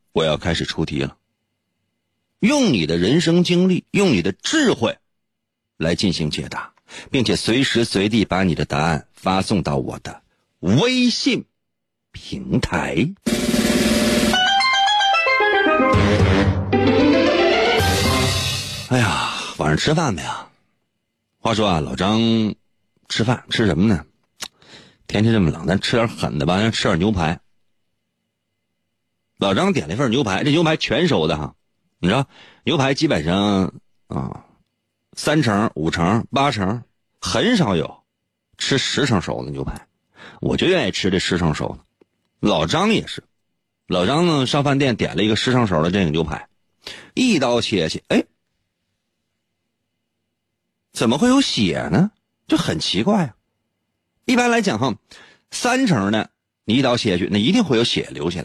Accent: native